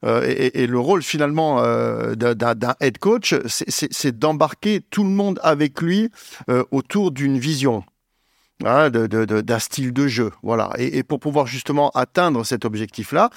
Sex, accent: male, French